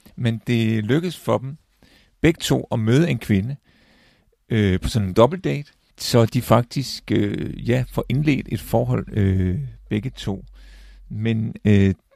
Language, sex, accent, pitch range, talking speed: Danish, male, native, 100-130 Hz, 150 wpm